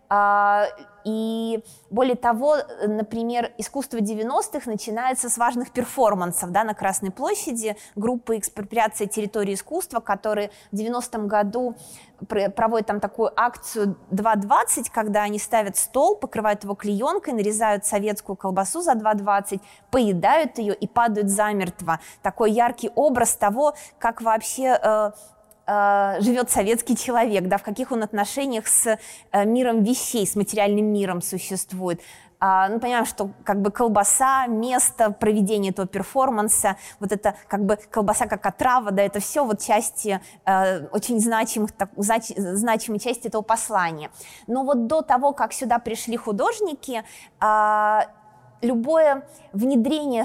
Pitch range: 205-240 Hz